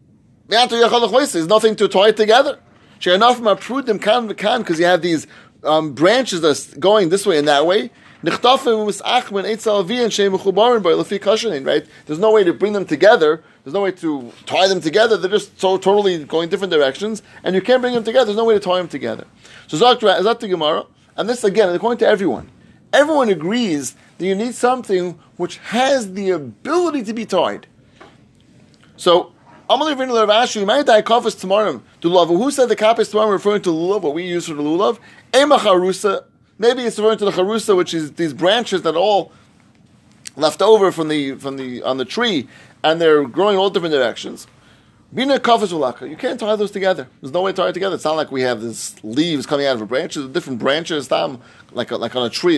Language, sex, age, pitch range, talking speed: English, male, 30-49, 155-225 Hz, 180 wpm